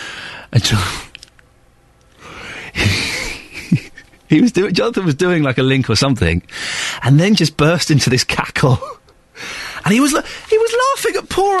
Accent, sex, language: British, male, English